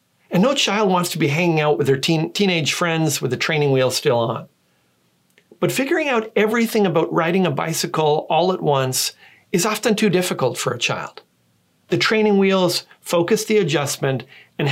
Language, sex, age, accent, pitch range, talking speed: English, male, 40-59, American, 135-190 Hz, 180 wpm